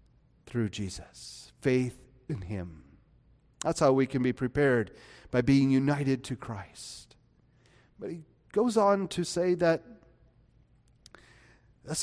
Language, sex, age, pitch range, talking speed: English, male, 40-59, 140-215 Hz, 120 wpm